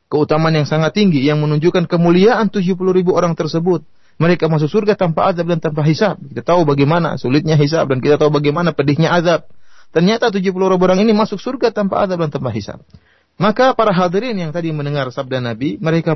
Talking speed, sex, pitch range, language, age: 190 wpm, male, 140-195 Hz, Indonesian, 30-49